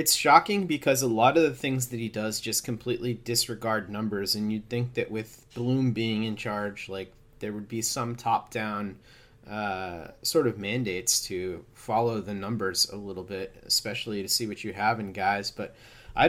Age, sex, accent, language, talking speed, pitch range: 30-49, male, American, English, 185 wpm, 105-125 Hz